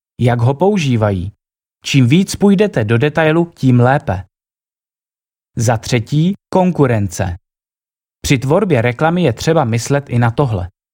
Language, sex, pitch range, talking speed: Czech, male, 115-160 Hz, 120 wpm